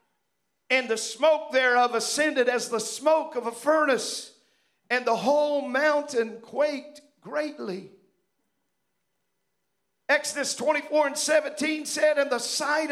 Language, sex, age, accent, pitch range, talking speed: English, male, 50-69, American, 255-300 Hz, 115 wpm